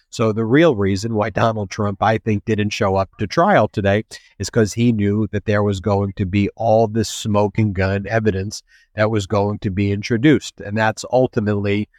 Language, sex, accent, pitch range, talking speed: English, male, American, 100-115 Hz, 195 wpm